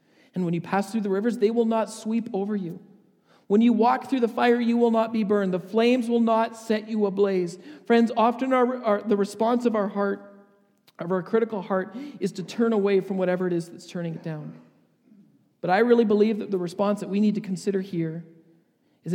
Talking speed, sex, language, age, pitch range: 220 wpm, male, English, 40-59, 185-220 Hz